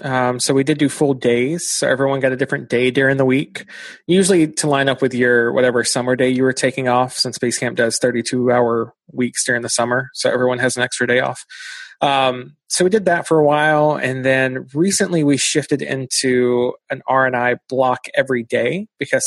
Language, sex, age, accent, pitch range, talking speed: English, male, 20-39, American, 125-145 Hz, 210 wpm